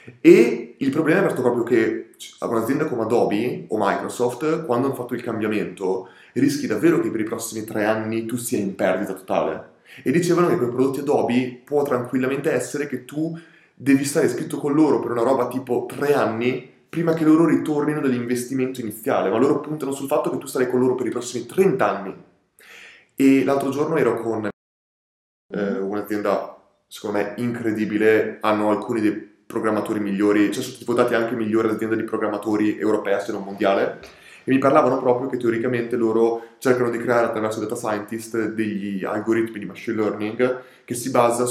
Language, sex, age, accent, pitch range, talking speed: Italian, male, 30-49, native, 110-135 Hz, 180 wpm